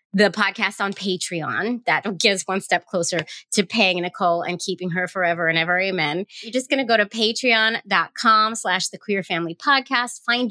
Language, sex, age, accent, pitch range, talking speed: English, female, 30-49, American, 180-245 Hz, 185 wpm